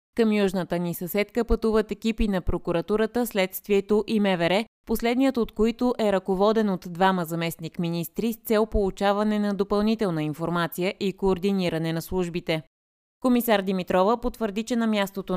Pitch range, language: 175-220 Hz, Bulgarian